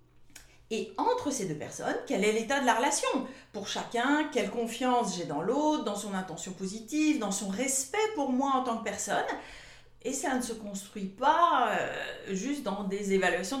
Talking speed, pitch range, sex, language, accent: 180 wpm, 195-275 Hz, female, French, French